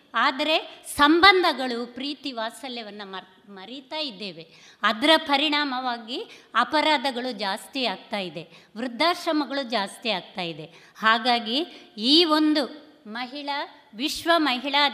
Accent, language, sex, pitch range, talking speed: native, Kannada, female, 230-300 Hz, 90 wpm